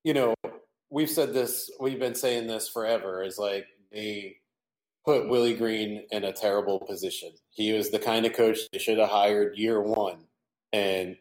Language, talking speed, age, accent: English, 175 wpm, 20-39, American